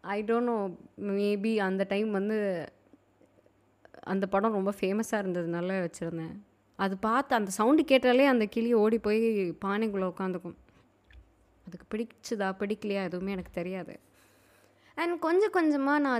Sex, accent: female, native